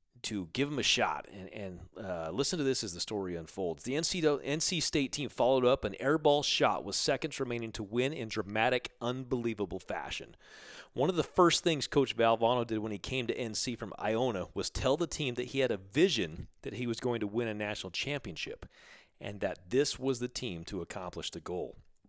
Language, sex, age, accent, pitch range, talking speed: English, male, 40-59, American, 100-135 Hz, 205 wpm